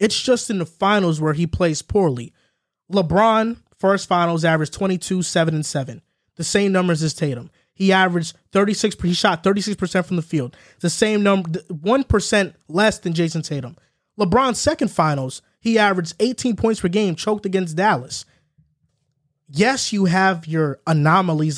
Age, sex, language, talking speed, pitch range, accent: 20-39, male, English, 155 wpm, 155-200 Hz, American